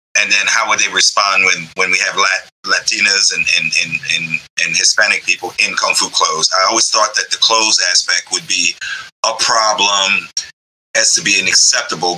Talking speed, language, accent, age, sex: 180 wpm, English, American, 30-49, male